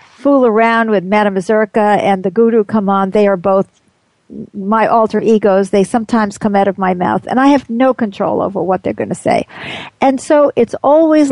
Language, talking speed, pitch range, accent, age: English, 200 wpm, 205-280 Hz, American, 50-69